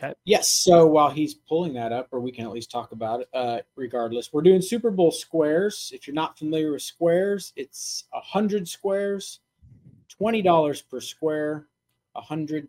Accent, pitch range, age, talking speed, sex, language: American, 125-165 Hz, 30-49, 165 wpm, male, English